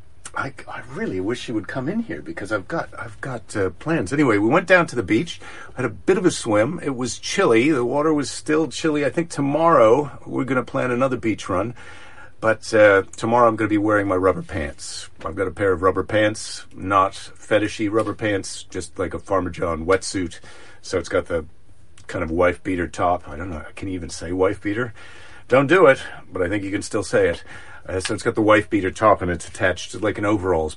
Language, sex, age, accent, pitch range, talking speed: English, male, 50-69, American, 90-115 Hz, 230 wpm